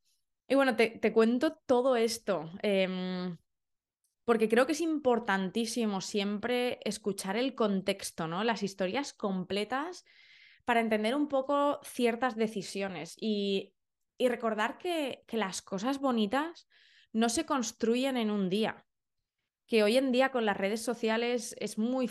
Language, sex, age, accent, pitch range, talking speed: Spanish, female, 20-39, Spanish, 195-240 Hz, 140 wpm